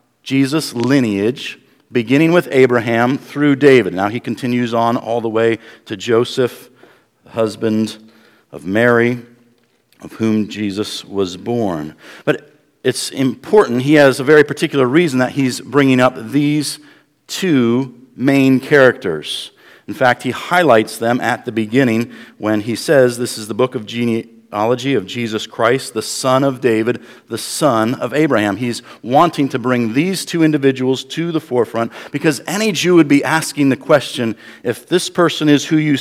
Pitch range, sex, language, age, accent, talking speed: 115-145 Hz, male, English, 50-69, American, 155 wpm